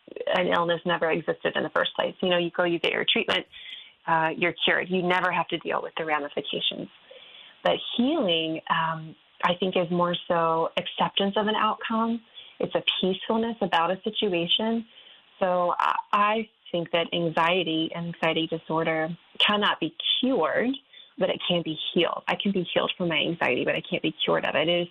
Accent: American